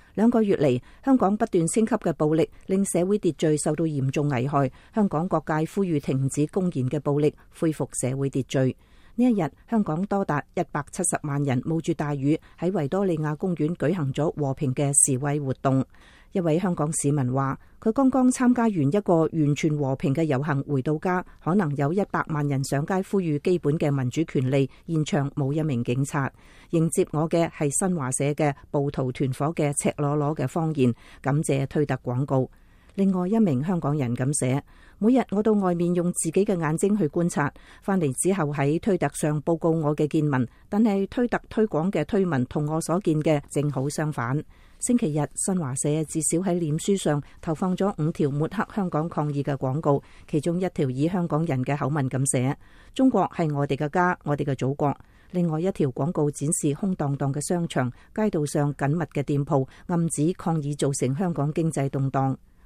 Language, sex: English, female